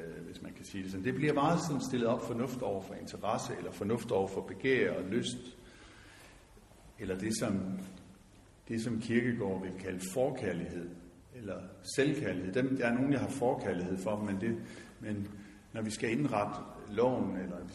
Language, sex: Danish, male